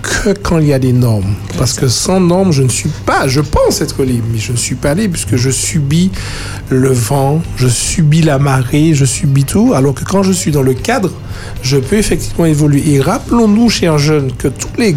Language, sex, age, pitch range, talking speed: French, male, 60-79, 125-175 Hz, 225 wpm